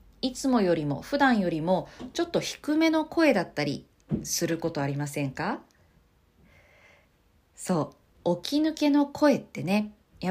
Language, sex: Japanese, female